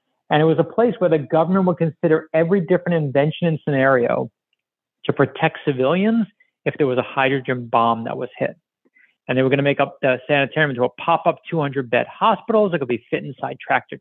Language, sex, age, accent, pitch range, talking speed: English, male, 50-69, American, 135-180 Hz, 210 wpm